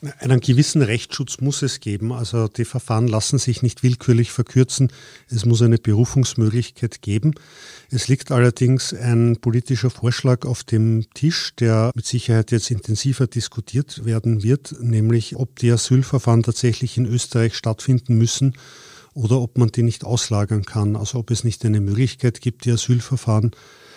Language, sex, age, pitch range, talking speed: German, male, 50-69, 110-125 Hz, 155 wpm